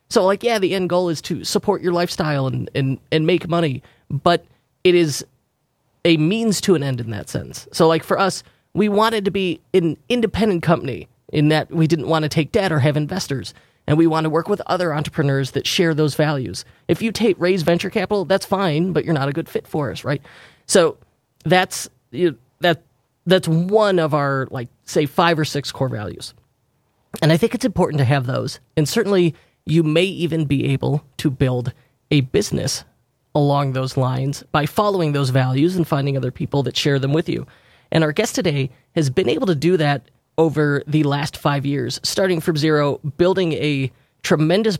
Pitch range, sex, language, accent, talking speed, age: 140-180 Hz, male, English, American, 200 wpm, 30-49